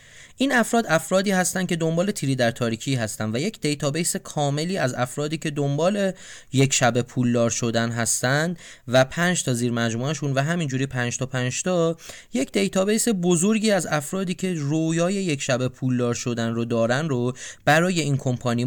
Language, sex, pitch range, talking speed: Persian, male, 125-160 Hz, 160 wpm